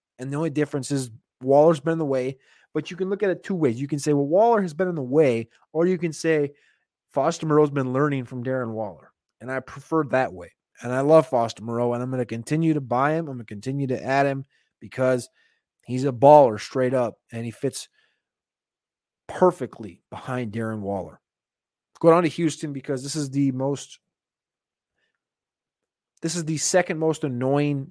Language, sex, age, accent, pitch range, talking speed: English, male, 30-49, American, 130-165 Hz, 200 wpm